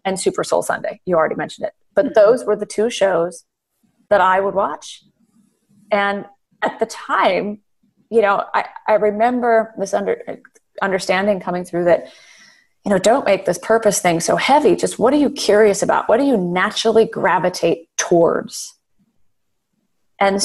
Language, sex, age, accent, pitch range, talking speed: English, female, 30-49, American, 175-225 Hz, 160 wpm